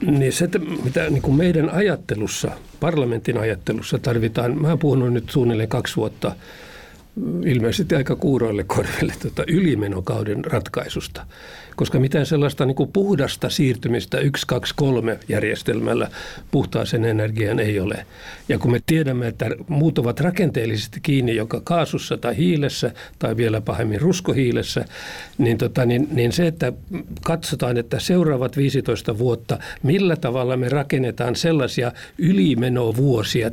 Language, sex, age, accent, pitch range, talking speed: Finnish, male, 60-79, native, 115-155 Hz, 125 wpm